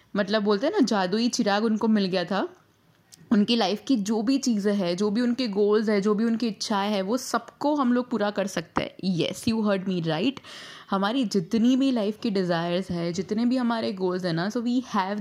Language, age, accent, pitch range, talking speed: Hindi, 20-39, native, 185-250 Hz, 230 wpm